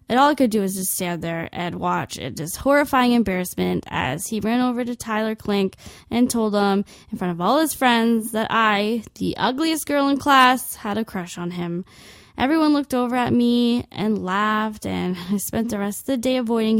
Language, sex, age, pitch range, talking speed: English, female, 10-29, 190-240 Hz, 205 wpm